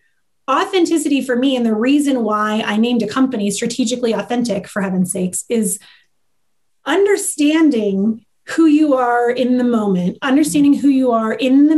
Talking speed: 155 wpm